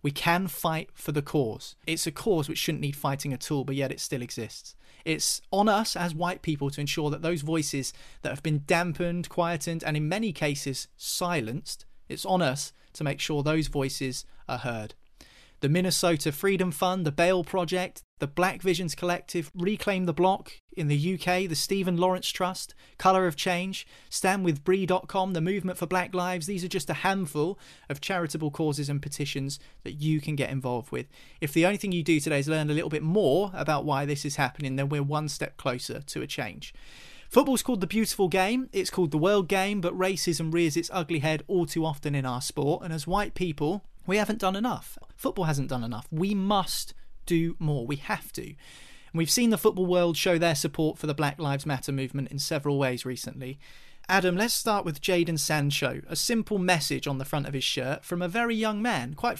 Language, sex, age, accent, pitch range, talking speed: English, male, 20-39, British, 145-185 Hz, 205 wpm